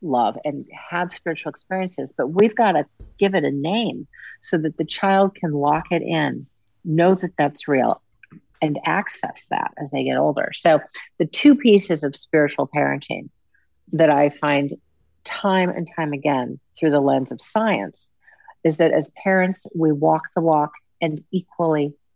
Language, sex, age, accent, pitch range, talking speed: English, female, 50-69, American, 150-180 Hz, 165 wpm